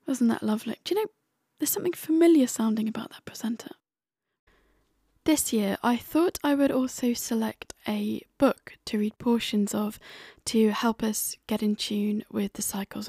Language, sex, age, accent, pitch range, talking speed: English, female, 10-29, British, 205-235 Hz, 165 wpm